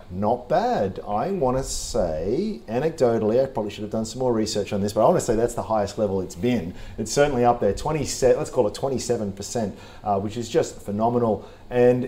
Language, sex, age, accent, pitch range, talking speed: English, male, 40-59, Australian, 105-135 Hz, 210 wpm